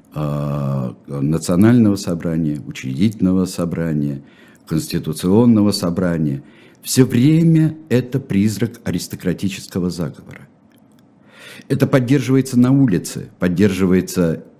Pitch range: 85-120 Hz